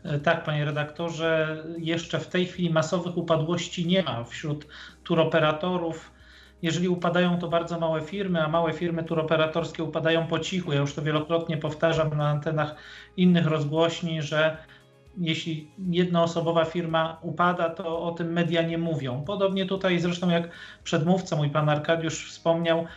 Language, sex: Polish, male